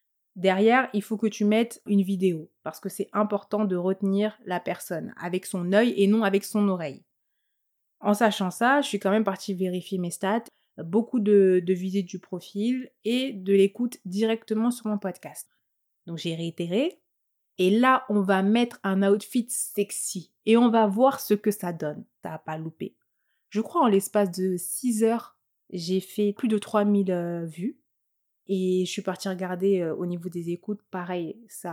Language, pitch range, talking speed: French, 185-225 Hz, 180 wpm